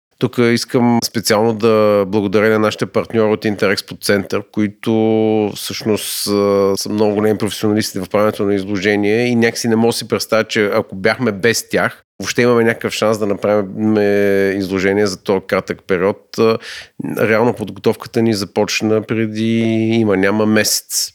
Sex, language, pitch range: male, Bulgarian, 100-120 Hz